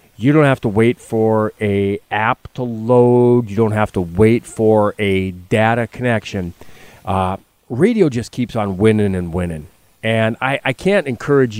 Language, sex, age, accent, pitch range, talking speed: English, male, 30-49, American, 105-140 Hz, 165 wpm